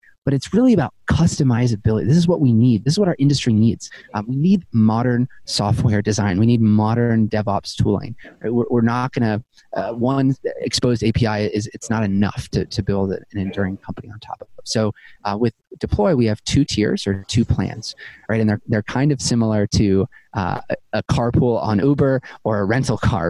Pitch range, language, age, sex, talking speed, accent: 105-125 Hz, English, 30-49, male, 205 wpm, American